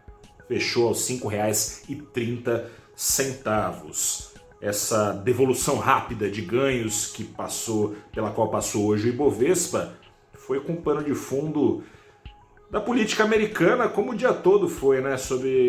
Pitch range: 105-130 Hz